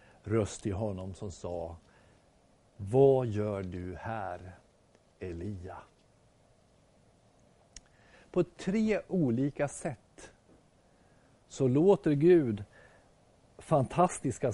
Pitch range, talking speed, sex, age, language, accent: 105-150 Hz, 75 wpm, male, 50-69, Swedish, native